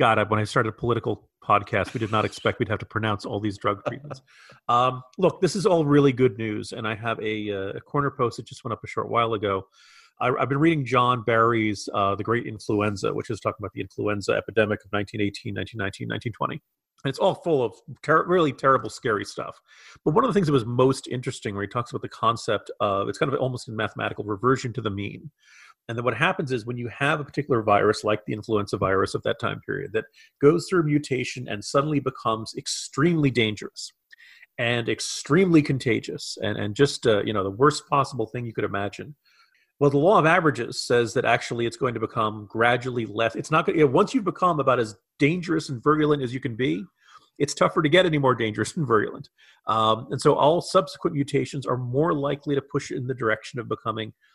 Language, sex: English, male